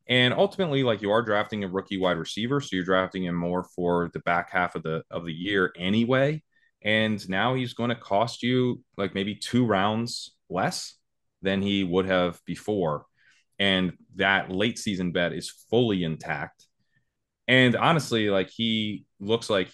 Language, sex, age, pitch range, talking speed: English, male, 20-39, 90-115 Hz, 170 wpm